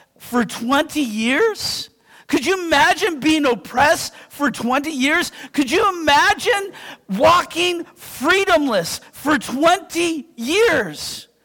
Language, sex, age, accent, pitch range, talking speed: English, male, 50-69, American, 295-380 Hz, 100 wpm